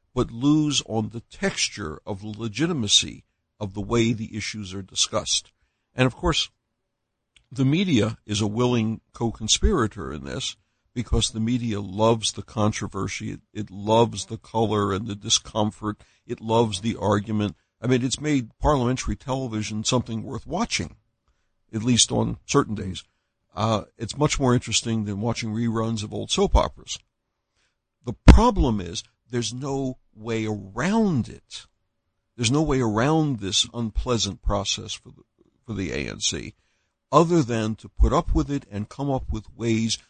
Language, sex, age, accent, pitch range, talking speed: English, male, 60-79, American, 105-125 Hz, 150 wpm